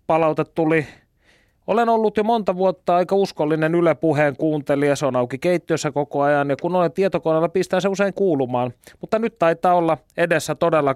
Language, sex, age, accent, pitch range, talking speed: Finnish, male, 30-49, native, 145-180 Hz, 170 wpm